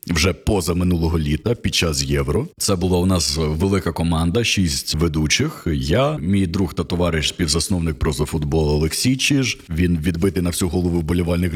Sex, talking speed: male, 155 wpm